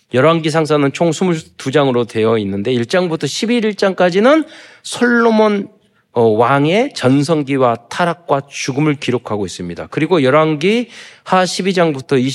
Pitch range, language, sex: 120-180 Hz, Korean, male